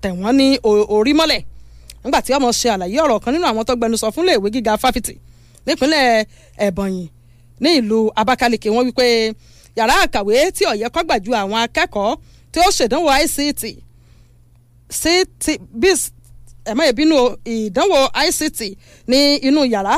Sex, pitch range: female, 215-285 Hz